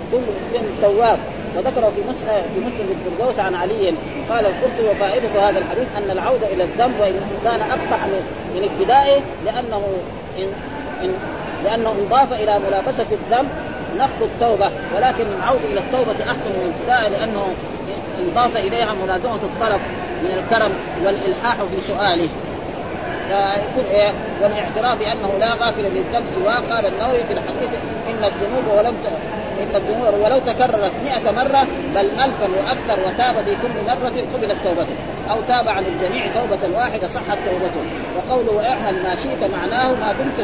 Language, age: Arabic, 30-49